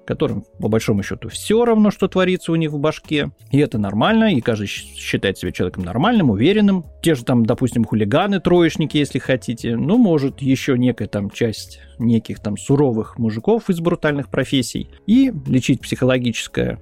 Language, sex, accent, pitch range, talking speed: Russian, male, native, 115-165 Hz, 160 wpm